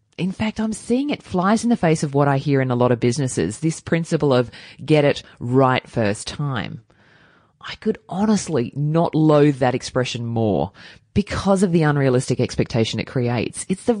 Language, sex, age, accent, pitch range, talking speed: English, female, 20-39, Australian, 120-185 Hz, 185 wpm